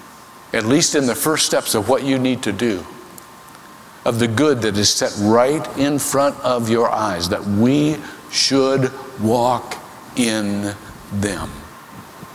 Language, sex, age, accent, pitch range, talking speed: English, male, 60-79, American, 110-150 Hz, 145 wpm